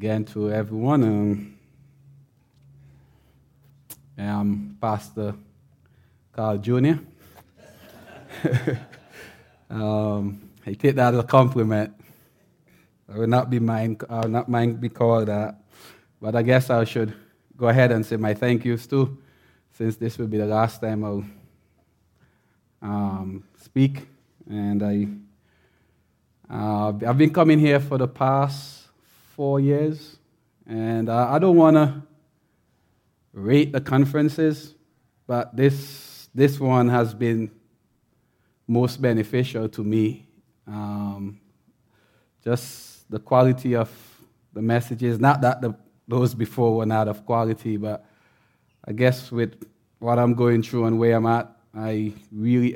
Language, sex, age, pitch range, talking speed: English, male, 20-39, 105-130 Hz, 120 wpm